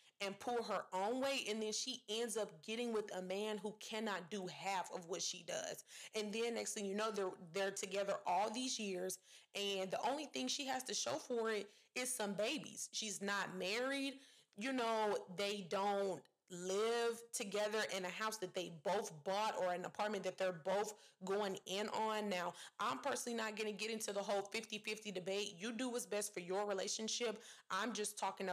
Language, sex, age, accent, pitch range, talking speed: English, female, 20-39, American, 190-225 Hz, 200 wpm